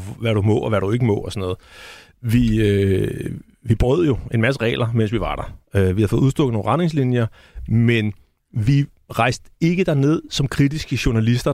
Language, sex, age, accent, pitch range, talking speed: Danish, male, 30-49, native, 110-140 Hz, 200 wpm